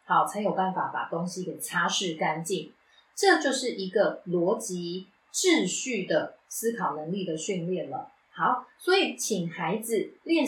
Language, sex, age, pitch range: Chinese, female, 30-49, 175-250 Hz